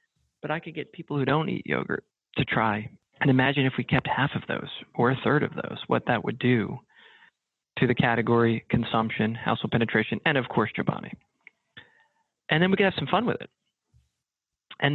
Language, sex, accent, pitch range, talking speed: English, male, American, 115-160 Hz, 195 wpm